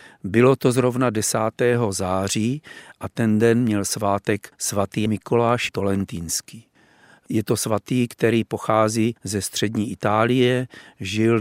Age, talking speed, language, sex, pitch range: 40-59, 115 wpm, Czech, male, 100-115 Hz